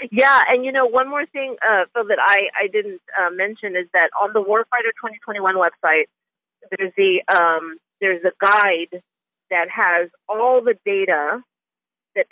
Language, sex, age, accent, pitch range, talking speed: English, female, 40-59, American, 180-230 Hz, 165 wpm